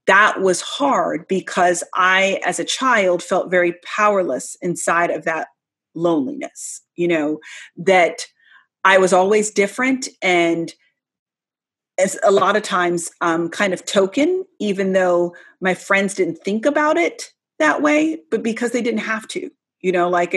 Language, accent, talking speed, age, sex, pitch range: English, American, 150 wpm, 30-49, female, 180-225 Hz